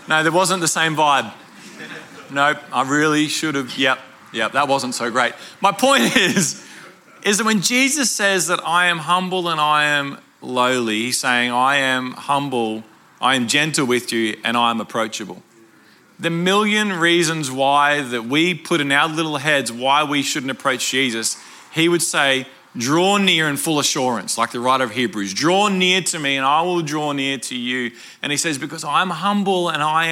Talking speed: 190 wpm